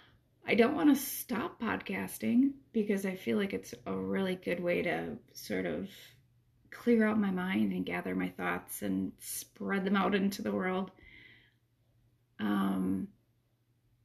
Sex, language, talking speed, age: female, English, 145 wpm, 30-49